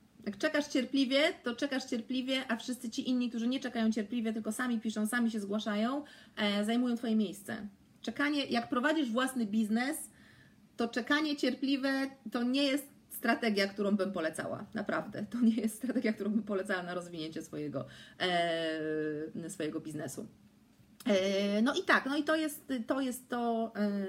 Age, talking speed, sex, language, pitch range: 40-59, 160 wpm, female, Polish, 190-235 Hz